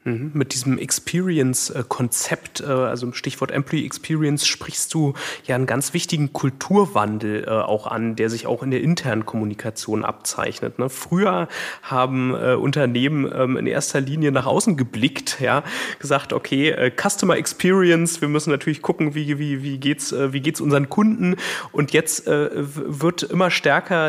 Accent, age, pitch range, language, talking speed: German, 30-49, 130-155 Hz, German, 140 wpm